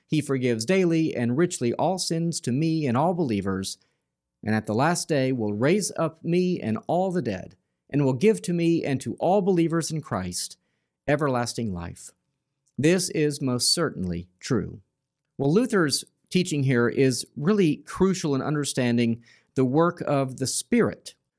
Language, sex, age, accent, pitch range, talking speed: English, male, 50-69, American, 120-165 Hz, 160 wpm